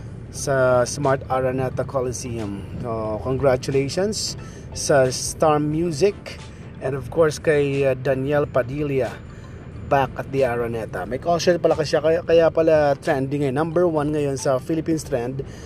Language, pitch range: Filipino, 130-160 Hz